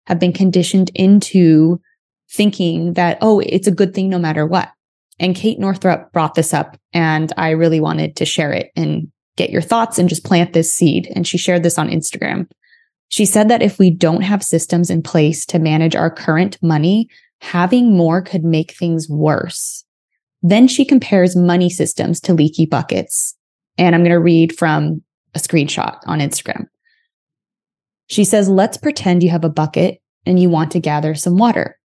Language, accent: English, American